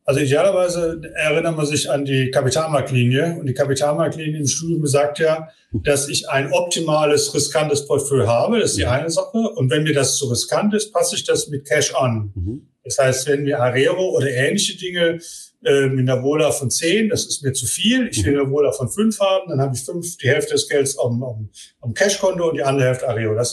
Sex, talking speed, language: male, 215 wpm, German